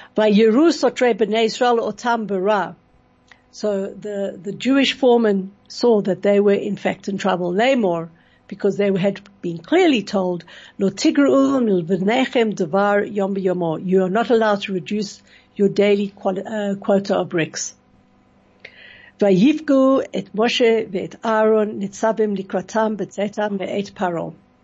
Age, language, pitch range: 60-79, English, 190-225 Hz